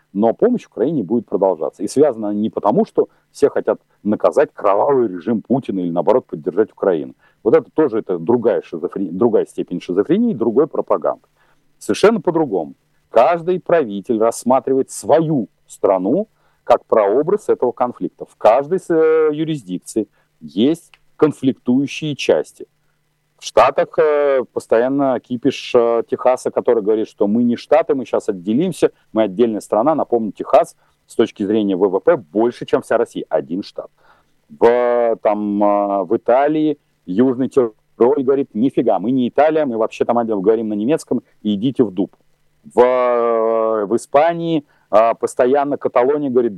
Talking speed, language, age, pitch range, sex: 140 wpm, Russian, 40-59, 115-185 Hz, male